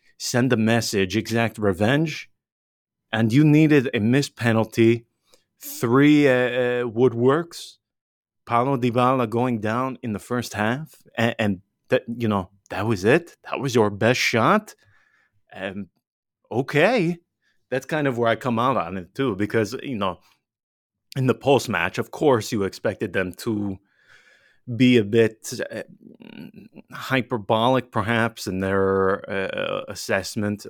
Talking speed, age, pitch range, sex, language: 140 wpm, 30-49, 95-120 Hz, male, English